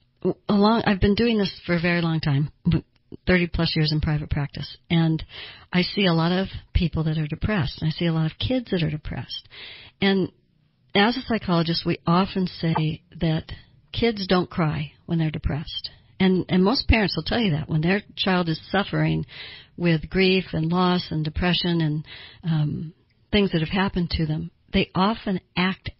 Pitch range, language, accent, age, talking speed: 155-180 Hz, English, American, 60-79, 185 wpm